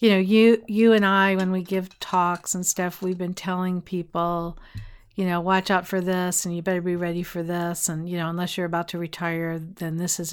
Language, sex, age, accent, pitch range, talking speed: English, female, 50-69, American, 170-215 Hz, 230 wpm